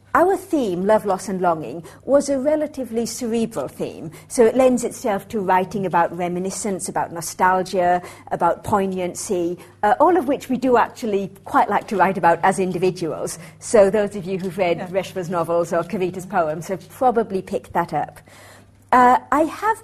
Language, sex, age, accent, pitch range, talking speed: English, female, 50-69, British, 185-250 Hz, 170 wpm